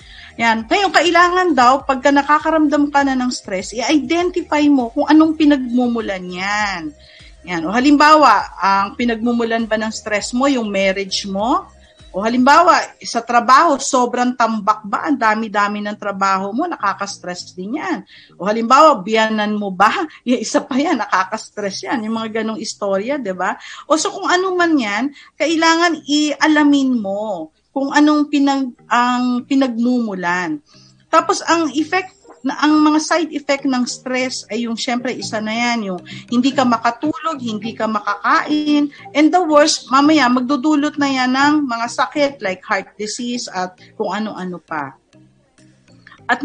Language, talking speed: Filipino, 150 wpm